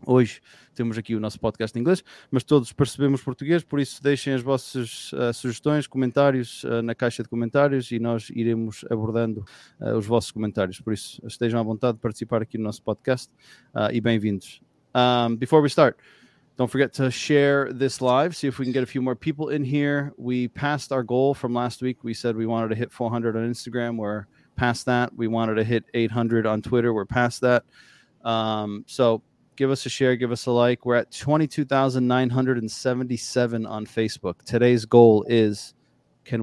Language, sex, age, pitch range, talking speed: English, male, 20-39, 110-130 Hz, 205 wpm